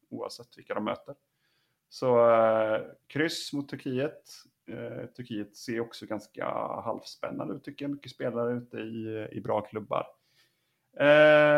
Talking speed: 135 wpm